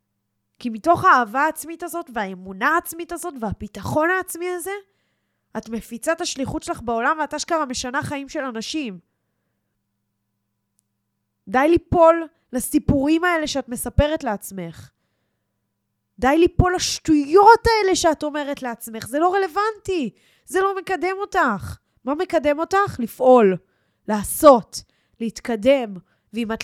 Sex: female